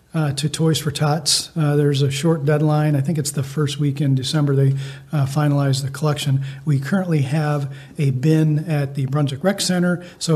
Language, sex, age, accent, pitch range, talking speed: English, male, 40-59, American, 140-155 Hz, 195 wpm